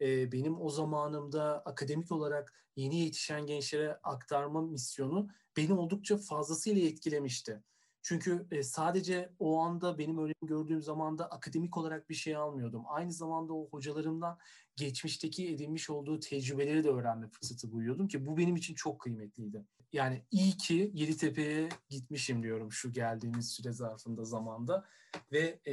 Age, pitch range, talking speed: 40-59, 130-160 Hz, 130 wpm